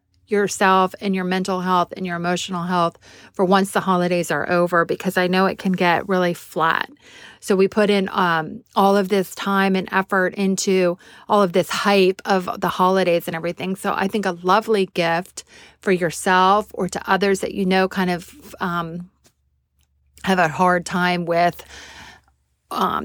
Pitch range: 170-190 Hz